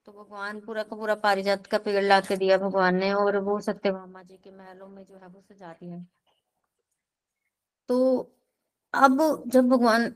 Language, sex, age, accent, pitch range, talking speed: Hindi, female, 20-39, native, 195-240 Hz, 165 wpm